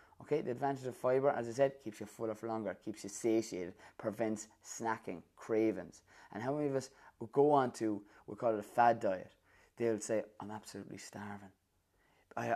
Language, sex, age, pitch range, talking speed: English, male, 20-39, 105-120 Hz, 195 wpm